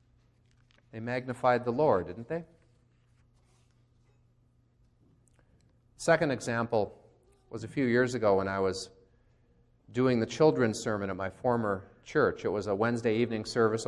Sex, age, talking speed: male, 40-59, 130 wpm